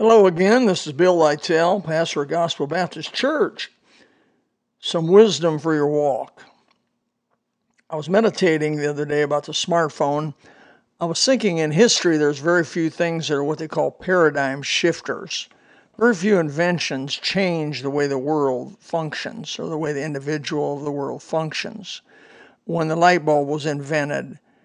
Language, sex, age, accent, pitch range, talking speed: English, male, 60-79, American, 150-170 Hz, 160 wpm